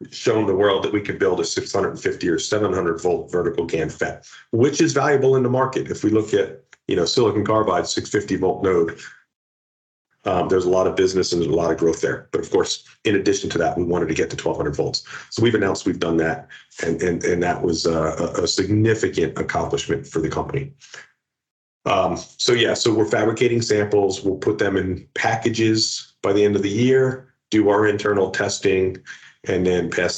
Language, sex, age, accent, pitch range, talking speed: English, male, 40-59, American, 85-125 Hz, 200 wpm